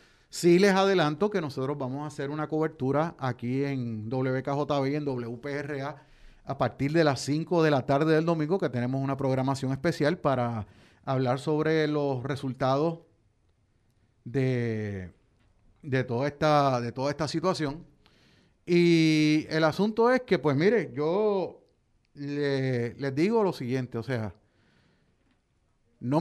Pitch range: 130-160 Hz